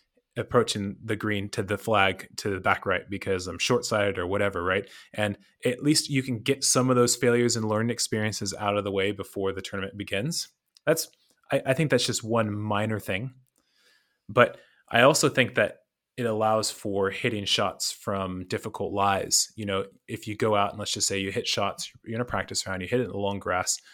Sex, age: male, 20-39